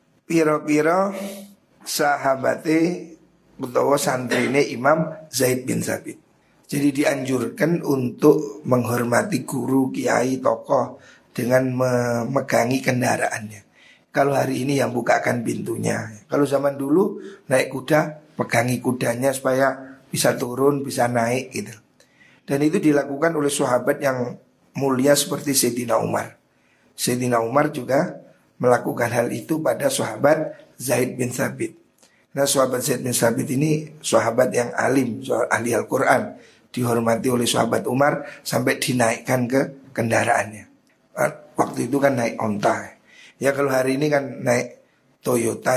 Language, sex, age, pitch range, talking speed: Indonesian, male, 50-69, 120-150 Hz, 120 wpm